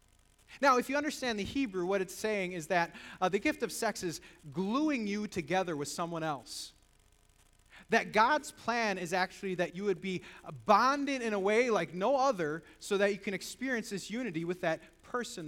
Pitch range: 150-230 Hz